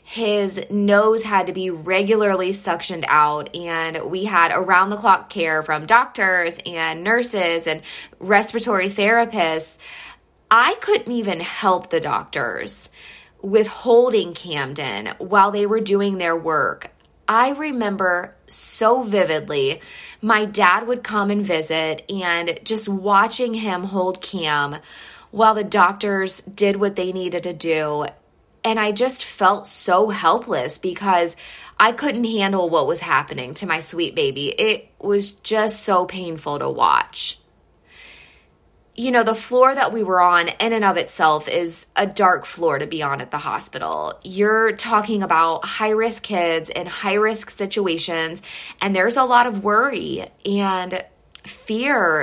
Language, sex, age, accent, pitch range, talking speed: English, female, 20-39, American, 170-220 Hz, 140 wpm